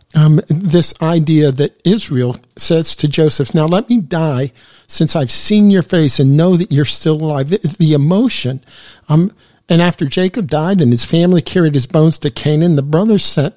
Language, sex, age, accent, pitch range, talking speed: English, male, 50-69, American, 140-180 Hz, 185 wpm